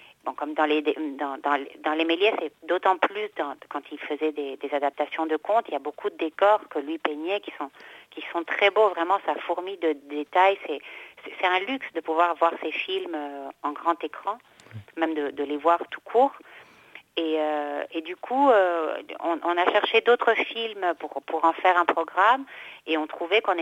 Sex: female